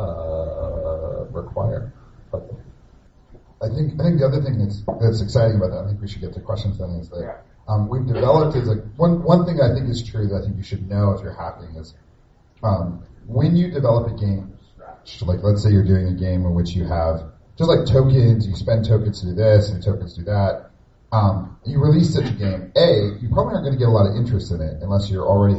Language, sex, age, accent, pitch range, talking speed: English, male, 40-59, American, 95-130 Hz, 235 wpm